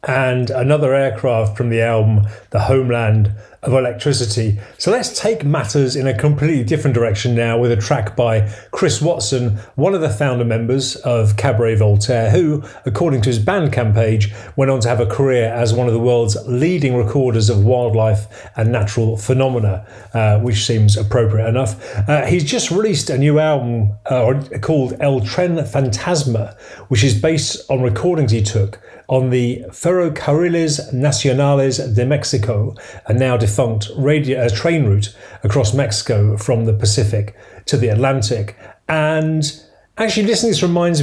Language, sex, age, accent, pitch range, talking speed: English, male, 40-59, British, 110-135 Hz, 160 wpm